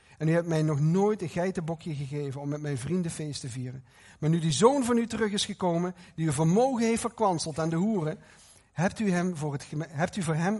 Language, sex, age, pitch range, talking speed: Dutch, male, 50-69, 140-185 Hz, 215 wpm